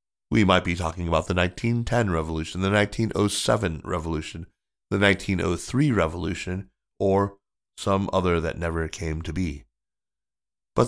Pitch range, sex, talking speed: 80-100 Hz, male, 125 wpm